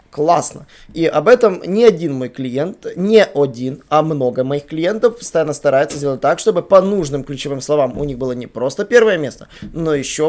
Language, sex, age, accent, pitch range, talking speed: Russian, male, 20-39, native, 140-180 Hz, 185 wpm